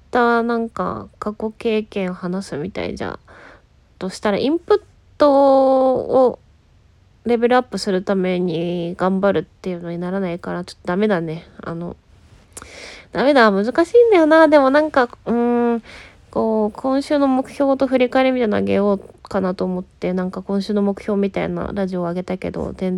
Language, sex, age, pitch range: Japanese, female, 20-39, 180-230 Hz